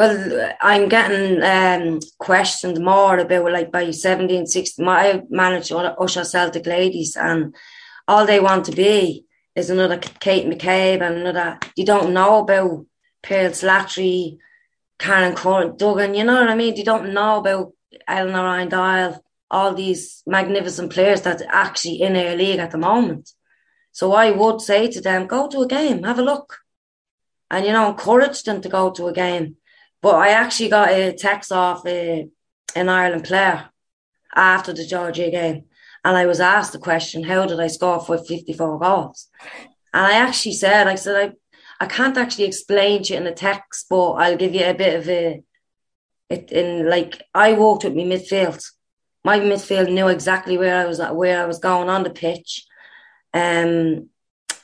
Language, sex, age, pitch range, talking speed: English, female, 20-39, 175-200 Hz, 175 wpm